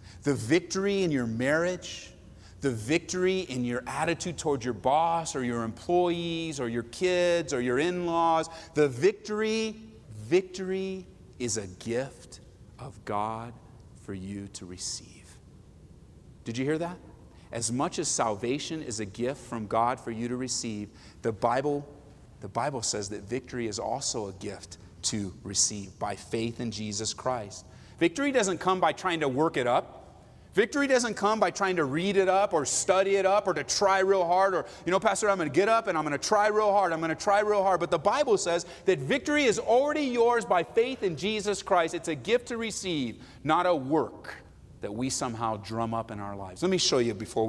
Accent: American